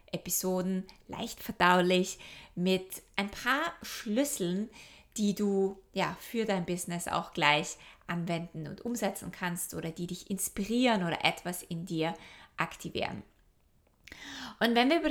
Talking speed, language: 125 wpm, German